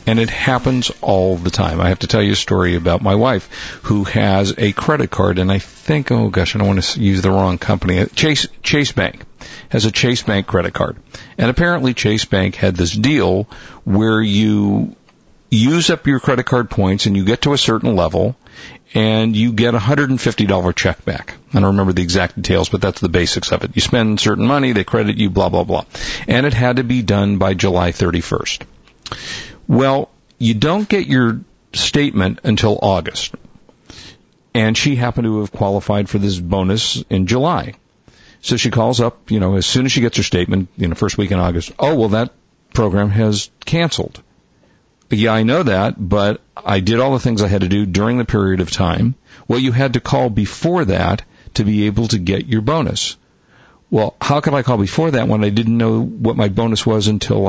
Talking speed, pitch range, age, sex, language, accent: 205 wpm, 95-120 Hz, 50-69, male, English, American